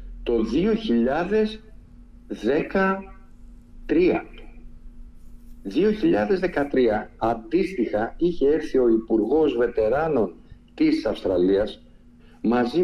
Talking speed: 55 wpm